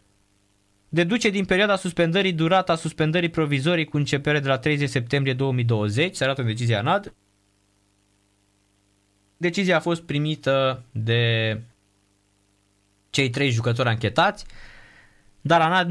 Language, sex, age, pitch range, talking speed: Romanian, male, 20-39, 100-140 Hz, 115 wpm